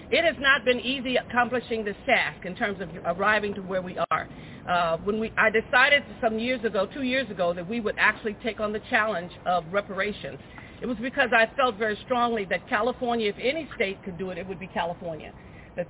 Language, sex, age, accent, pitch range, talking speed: English, female, 50-69, American, 185-240 Hz, 215 wpm